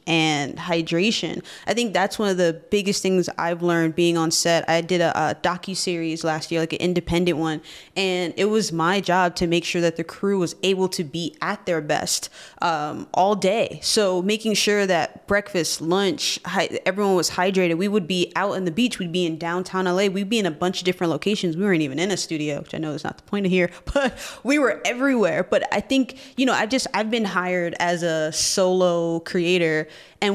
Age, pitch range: 20-39, 170-200 Hz